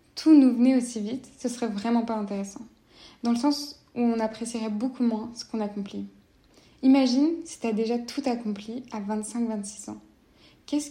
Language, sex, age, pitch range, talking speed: French, female, 10-29, 215-250 Hz, 175 wpm